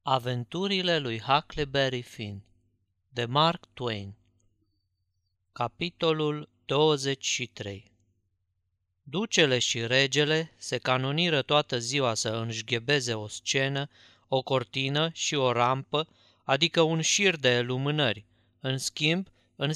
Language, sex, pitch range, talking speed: Romanian, male, 120-155 Hz, 100 wpm